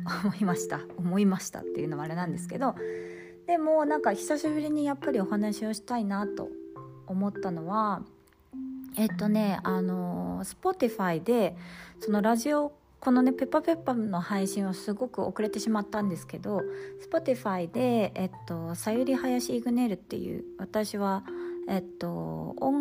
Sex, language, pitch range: female, Japanese, 165-250 Hz